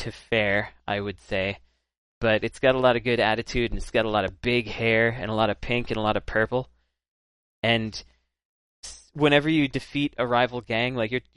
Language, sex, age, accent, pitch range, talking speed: English, male, 20-39, American, 95-120 Hz, 210 wpm